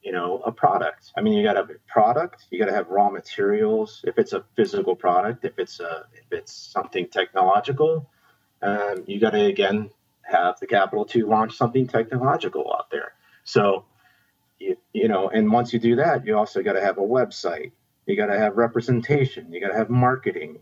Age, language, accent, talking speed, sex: 30-49, English, American, 200 wpm, male